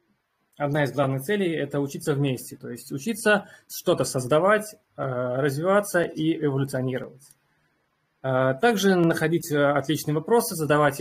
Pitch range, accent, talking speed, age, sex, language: 130-165 Hz, native, 110 wpm, 20-39, male, Russian